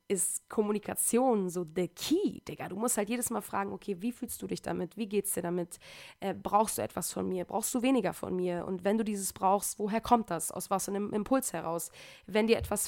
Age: 20-39